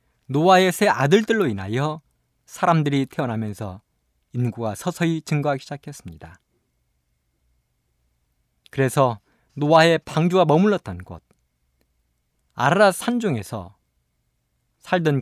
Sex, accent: male, native